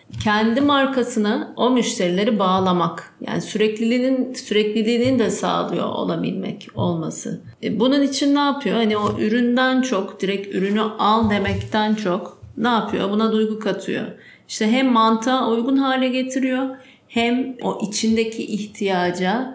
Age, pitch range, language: 40-59, 205-255 Hz, Turkish